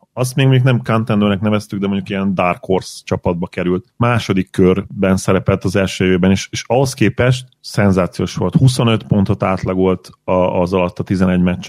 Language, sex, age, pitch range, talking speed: Hungarian, male, 30-49, 95-115 Hz, 175 wpm